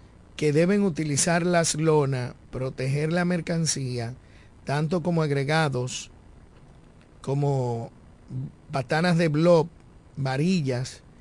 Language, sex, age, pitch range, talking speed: Spanish, male, 50-69, 130-170 Hz, 85 wpm